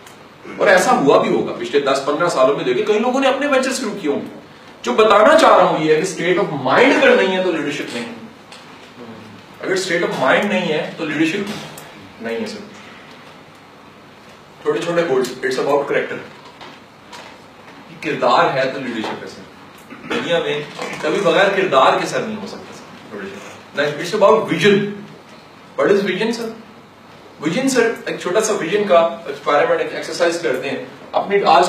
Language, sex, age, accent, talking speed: English, male, 40-59, Indian, 120 wpm